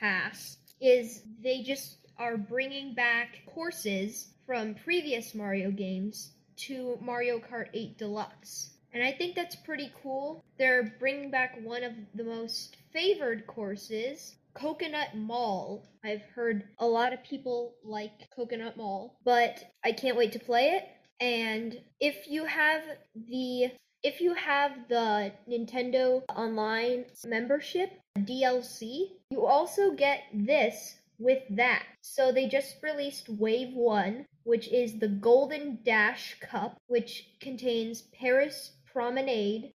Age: 10-29